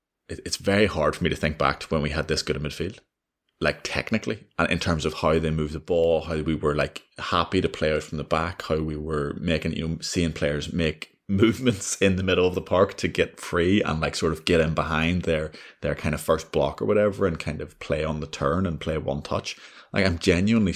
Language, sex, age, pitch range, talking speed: English, male, 20-39, 75-85 Hz, 250 wpm